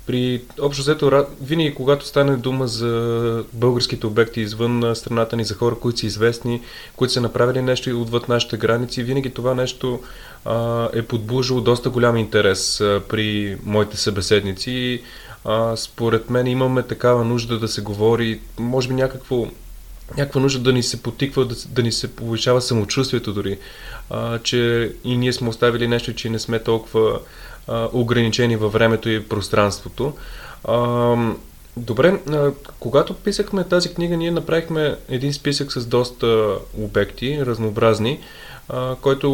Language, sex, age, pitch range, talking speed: Bulgarian, male, 20-39, 115-135 Hz, 135 wpm